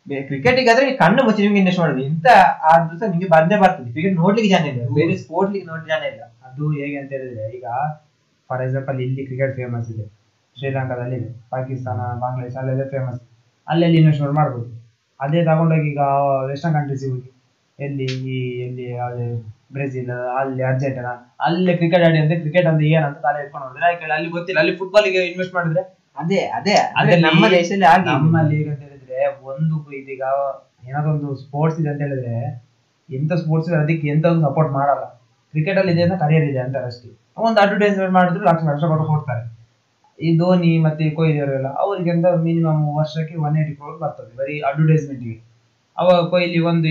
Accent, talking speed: native, 120 wpm